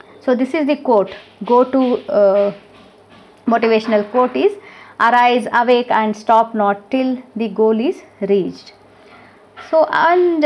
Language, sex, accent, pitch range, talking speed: English, female, Indian, 205-265 Hz, 120 wpm